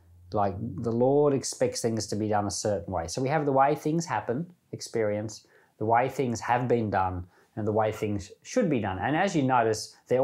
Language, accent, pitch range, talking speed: English, Australian, 110-155 Hz, 215 wpm